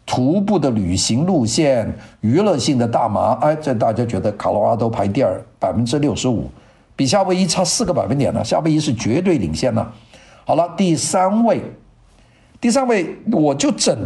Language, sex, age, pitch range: Chinese, male, 50-69, 110-155 Hz